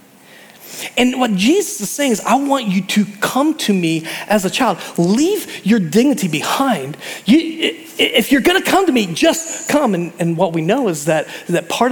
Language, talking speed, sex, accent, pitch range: English, 190 wpm, male, American, 185-275 Hz